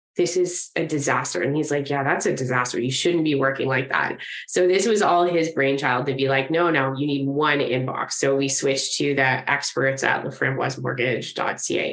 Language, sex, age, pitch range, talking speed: English, female, 20-39, 135-170 Hz, 200 wpm